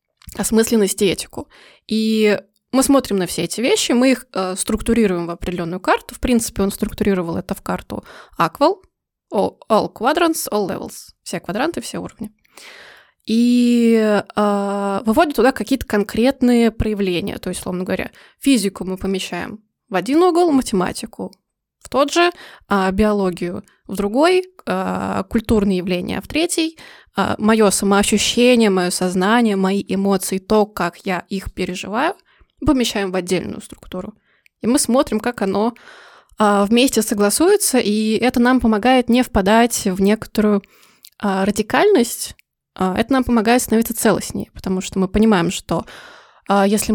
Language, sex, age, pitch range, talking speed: Russian, female, 20-39, 195-240 Hz, 130 wpm